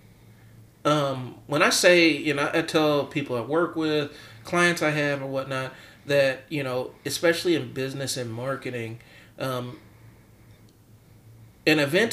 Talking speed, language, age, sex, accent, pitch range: 140 wpm, English, 40-59, male, American, 115-150 Hz